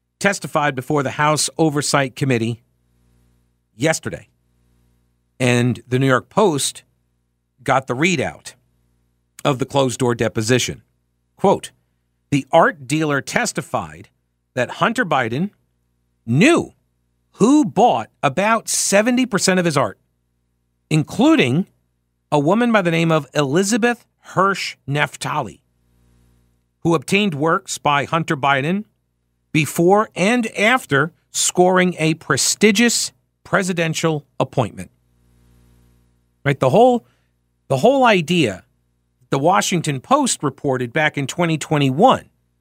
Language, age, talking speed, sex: English, 50-69, 100 wpm, male